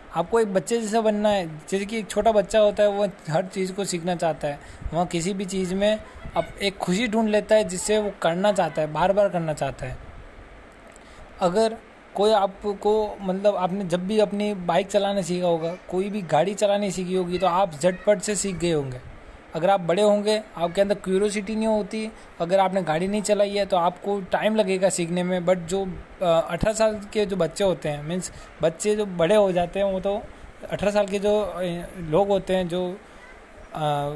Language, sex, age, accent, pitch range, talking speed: Hindi, male, 20-39, native, 165-205 Hz, 200 wpm